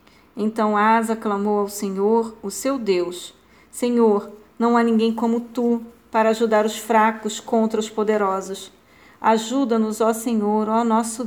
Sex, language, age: female, Portuguese, 40-59